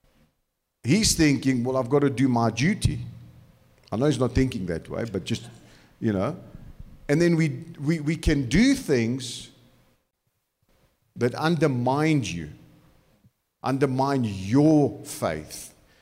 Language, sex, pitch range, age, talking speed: English, male, 110-150 Hz, 50-69, 125 wpm